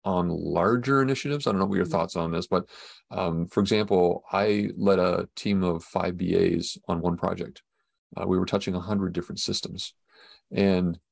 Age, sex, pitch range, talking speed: 40-59, male, 90-115 Hz, 185 wpm